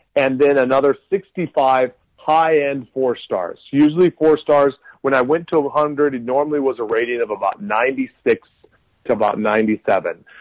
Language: English